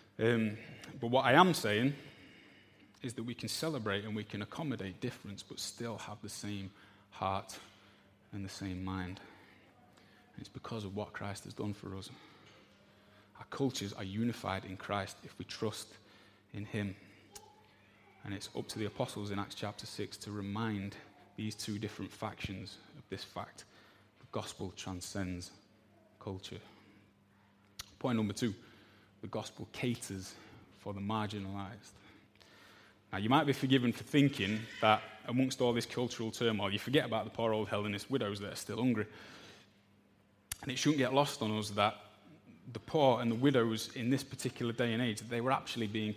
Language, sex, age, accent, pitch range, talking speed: English, male, 20-39, British, 100-115 Hz, 165 wpm